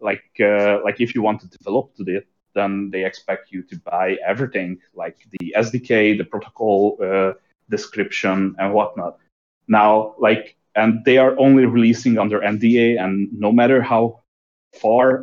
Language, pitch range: English, 105-140 Hz